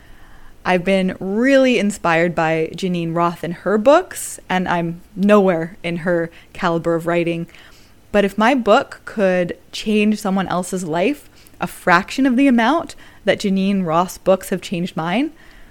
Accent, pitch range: American, 175-240 Hz